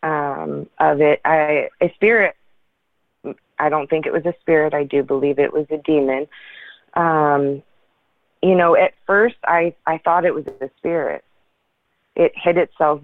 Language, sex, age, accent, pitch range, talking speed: English, female, 30-49, American, 145-160 Hz, 160 wpm